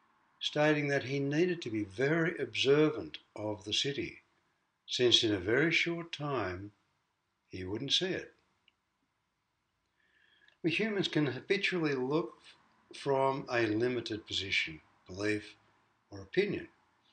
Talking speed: 115 wpm